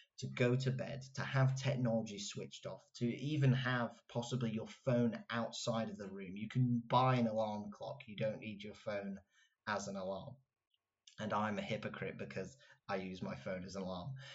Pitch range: 110-130 Hz